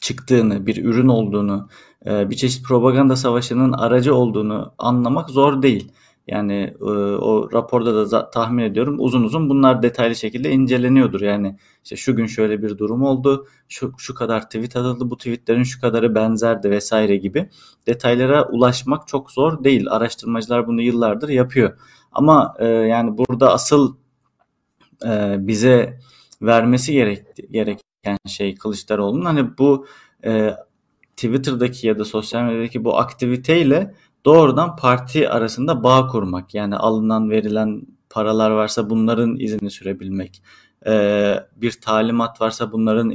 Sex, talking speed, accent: male, 130 wpm, native